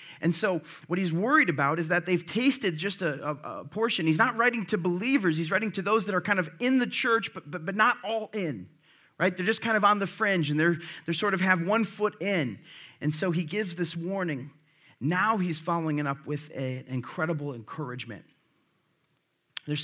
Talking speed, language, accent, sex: 215 wpm, English, American, male